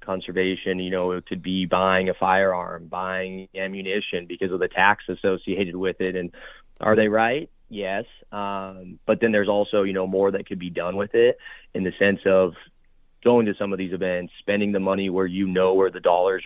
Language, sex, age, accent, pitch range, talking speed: English, male, 30-49, American, 95-105 Hz, 205 wpm